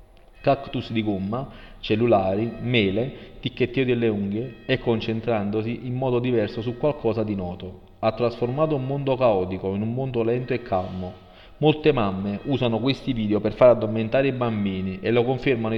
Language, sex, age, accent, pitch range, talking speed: Italian, male, 40-59, native, 110-130 Hz, 155 wpm